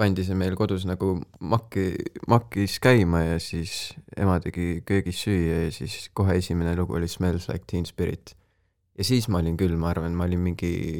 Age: 20-39